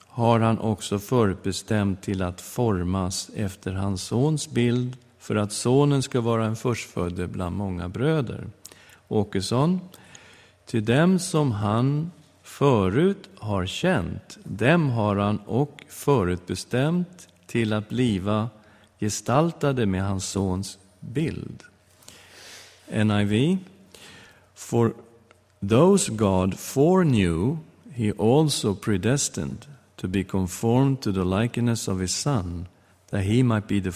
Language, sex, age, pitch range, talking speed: English, male, 50-69, 95-125 Hz, 115 wpm